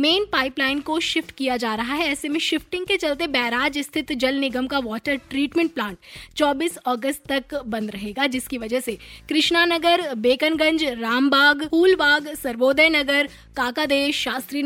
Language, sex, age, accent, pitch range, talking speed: Hindi, female, 20-39, native, 250-310 Hz, 155 wpm